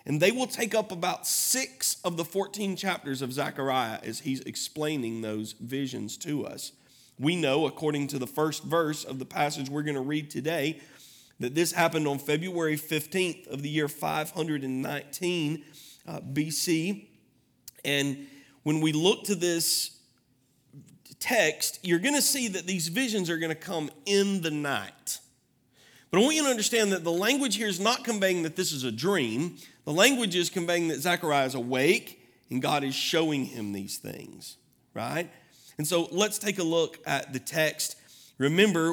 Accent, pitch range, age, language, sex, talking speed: American, 130-170 Hz, 40-59, English, male, 170 wpm